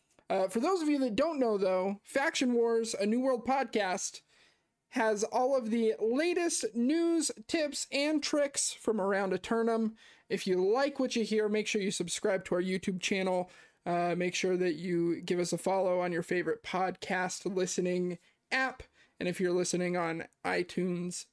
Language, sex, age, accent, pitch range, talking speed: English, male, 20-39, American, 180-230 Hz, 175 wpm